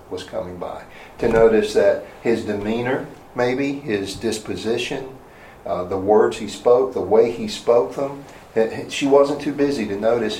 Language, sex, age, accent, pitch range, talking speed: English, male, 40-59, American, 105-140 Hz, 160 wpm